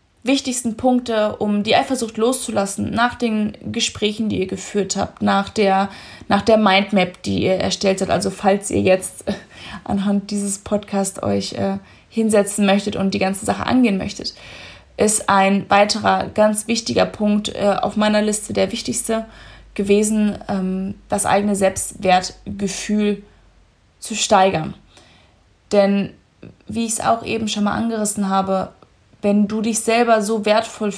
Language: German